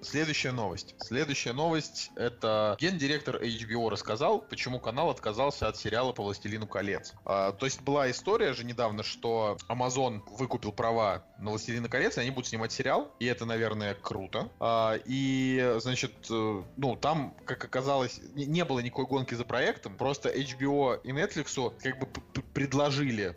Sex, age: male, 20-39